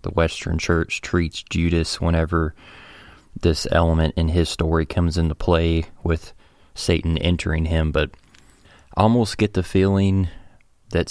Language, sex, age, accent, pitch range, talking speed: English, male, 20-39, American, 80-90 Hz, 135 wpm